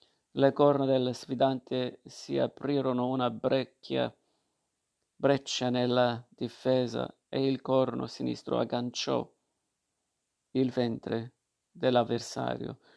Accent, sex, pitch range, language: native, male, 120-135 Hz, Italian